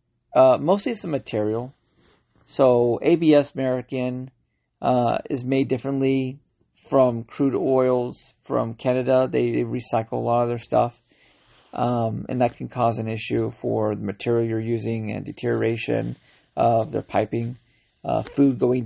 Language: English